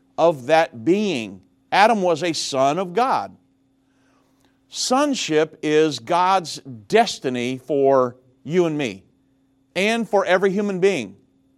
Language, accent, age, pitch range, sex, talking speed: English, American, 50-69, 135-185 Hz, male, 115 wpm